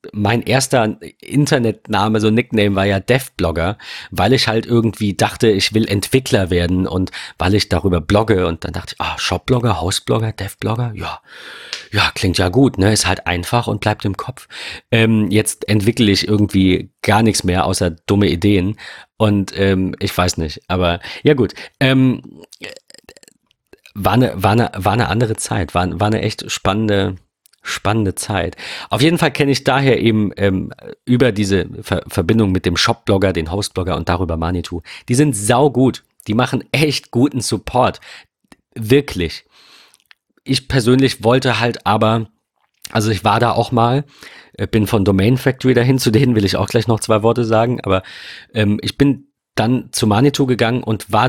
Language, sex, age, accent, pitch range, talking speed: German, male, 40-59, German, 95-120 Hz, 170 wpm